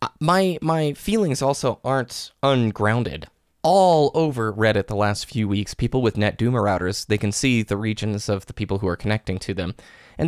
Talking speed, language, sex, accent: 180 wpm, English, male, American